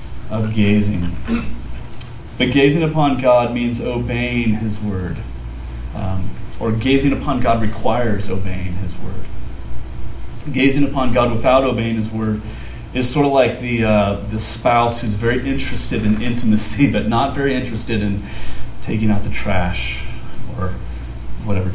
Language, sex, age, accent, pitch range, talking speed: English, male, 30-49, American, 110-135 Hz, 140 wpm